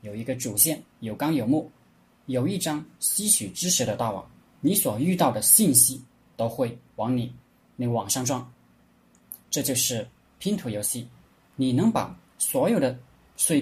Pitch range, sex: 115-140 Hz, male